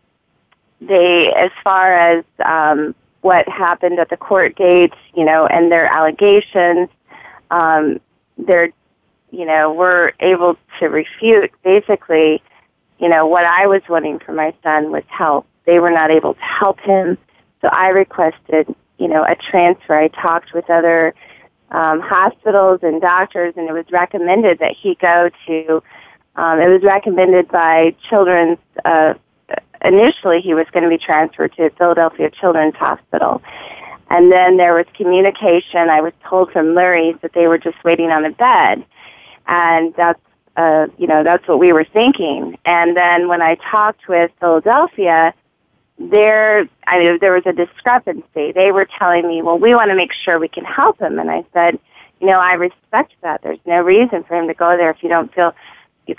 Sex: female